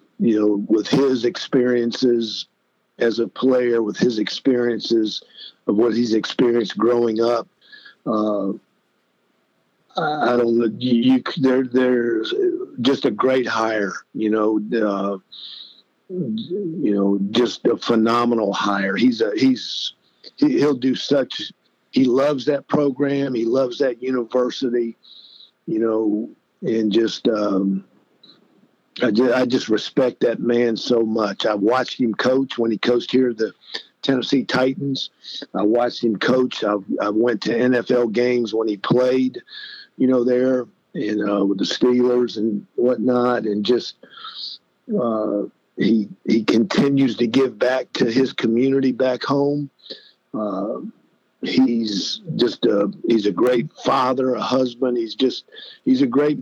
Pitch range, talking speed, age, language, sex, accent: 110-130 Hz, 135 wpm, 50-69, English, male, American